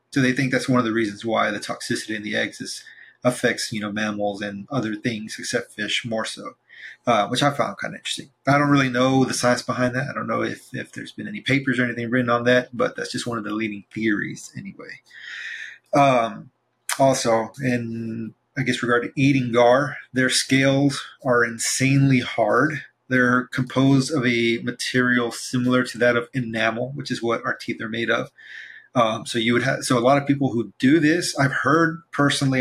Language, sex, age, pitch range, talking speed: English, male, 30-49, 115-135 Hz, 205 wpm